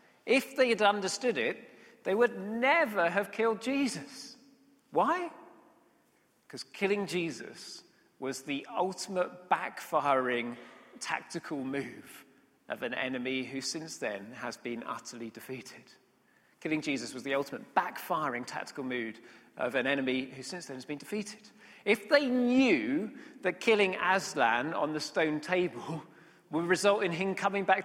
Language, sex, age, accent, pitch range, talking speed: English, male, 40-59, British, 150-205 Hz, 140 wpm